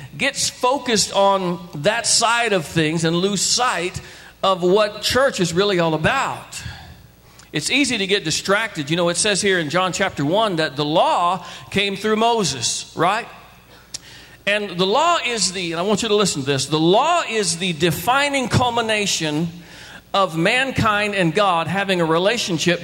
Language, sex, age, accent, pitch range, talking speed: English, male, 50-69, American, 175-240 Hz, 170 wpm